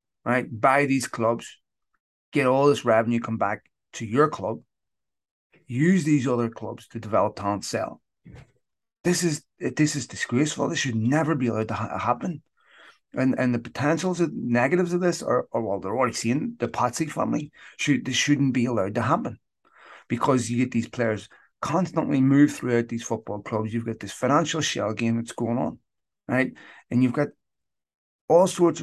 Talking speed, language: 175 wpm, English